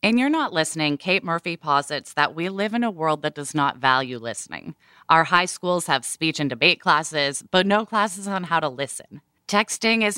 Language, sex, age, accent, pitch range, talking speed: English, female, 20-39, American, 150-195 Hz, 205 wpm